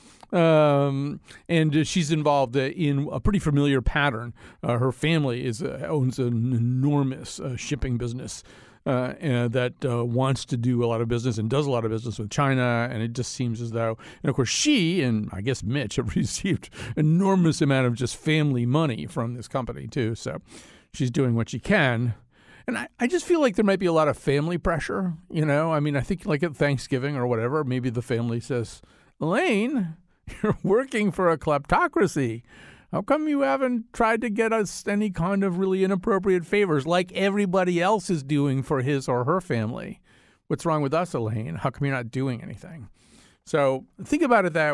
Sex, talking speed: male, 195 wpm